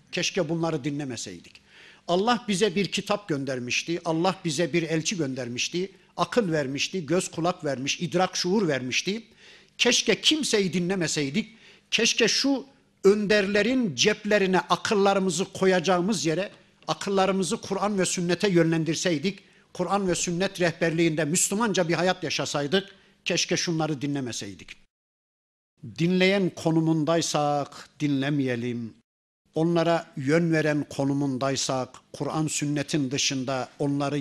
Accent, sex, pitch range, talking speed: native, male, 145-195 Hz, 100 wpm